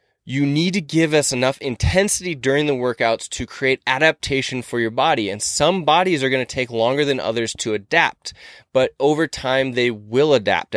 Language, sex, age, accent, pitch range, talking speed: English, male, 20-39, American, 115-140 Hz, 190 wpm